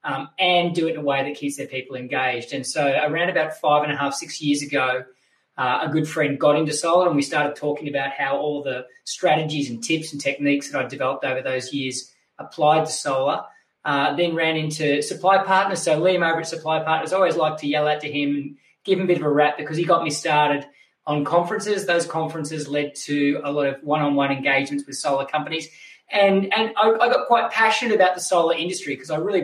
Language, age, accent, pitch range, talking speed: English, 20-39, Australian, 140-175 Hz, 230 wpm